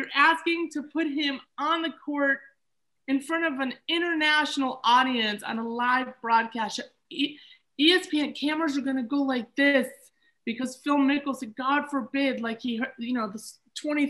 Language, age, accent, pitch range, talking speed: English, 20-39, American, 210-280 Hz, 165 wpm